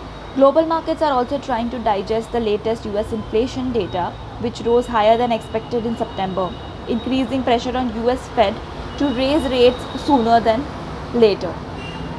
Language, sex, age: English, female, 20-39